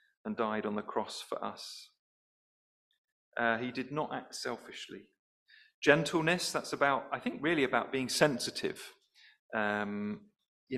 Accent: British